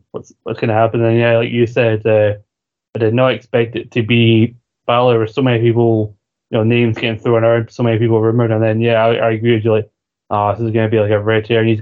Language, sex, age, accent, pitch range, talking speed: English, male, 20-39, British, 110-120 Hz, 280 wpm